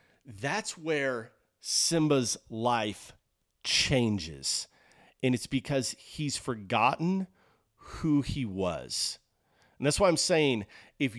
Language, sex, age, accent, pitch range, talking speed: English, male, 40-59, American, 115-150 Hz, 100 wpm